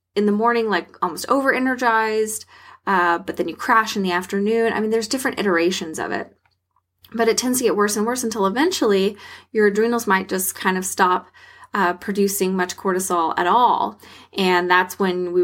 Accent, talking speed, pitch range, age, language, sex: American, 185 wpm, 175-225 Hz, 20-39, English, female